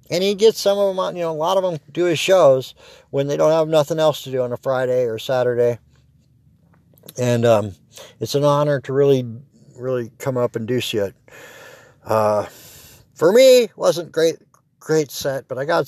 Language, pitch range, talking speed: English, 115-145 Hz, 200 wpm